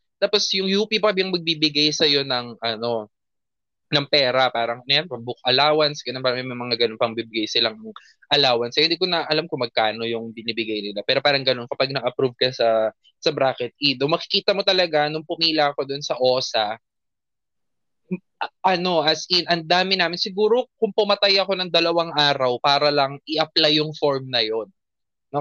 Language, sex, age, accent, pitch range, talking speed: Filipino, male, 20-39, native, 125-175 Hz, 175 wpm